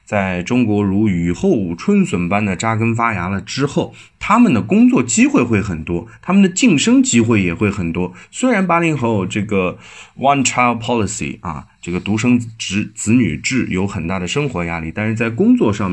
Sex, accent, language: male, native, Chinese